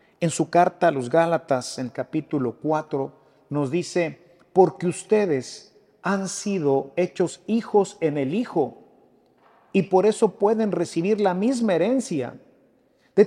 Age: 50-69